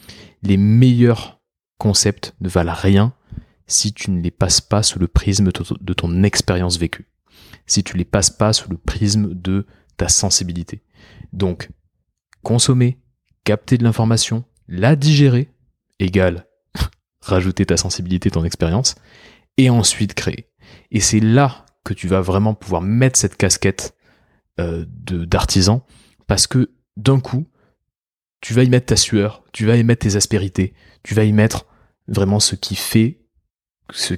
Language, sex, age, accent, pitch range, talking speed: French, male, 20-39, French, 95-120 Hz, 150 wpm